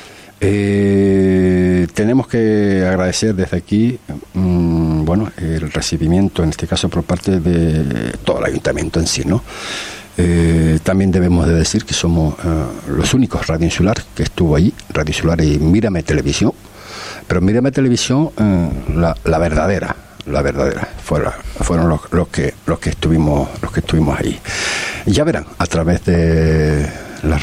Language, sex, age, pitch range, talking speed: Spanish, male, 60-79, 80-105 Hz, 155 wpm